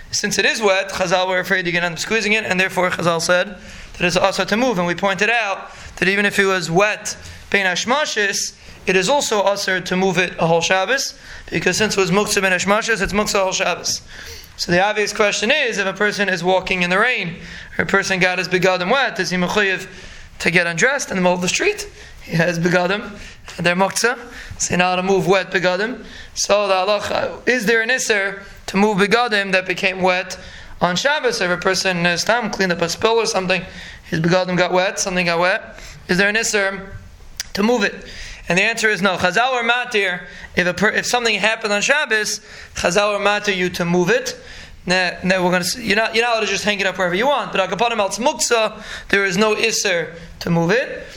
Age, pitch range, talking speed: 20-39, 180-215 Hz, 215 wpm